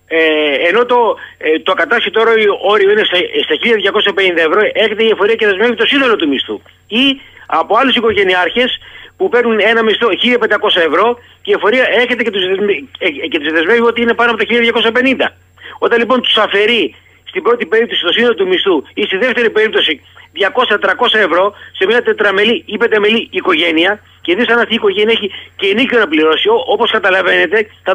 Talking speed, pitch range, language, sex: 175 wpm, 210-300 Hz, Greek, male